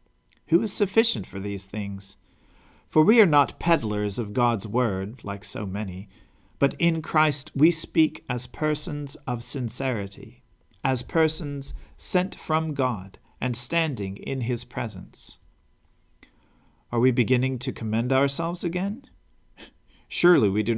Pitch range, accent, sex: 110-155 Hz, American, male